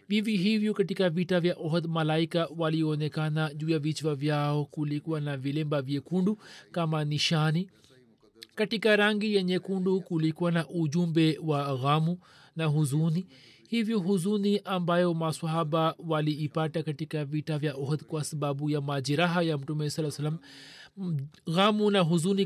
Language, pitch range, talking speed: Swahili, 150-180 Hz, 130 wpm